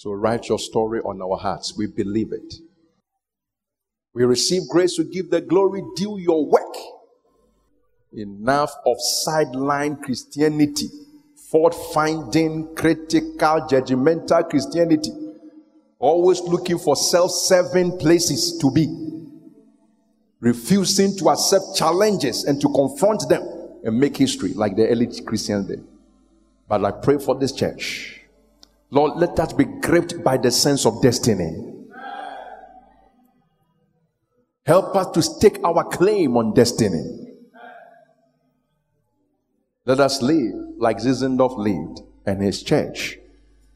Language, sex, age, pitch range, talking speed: English, male, 50-69, 120-180 Hz, 115 wpm